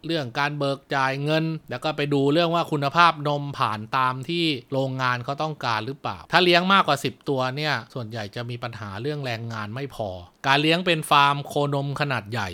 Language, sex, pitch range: Thai, male, 120-155 Hz